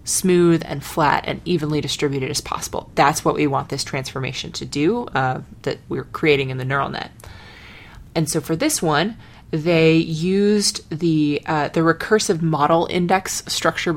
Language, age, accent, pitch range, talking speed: English, 20-39, American, 145-170 Hz, 165 wpm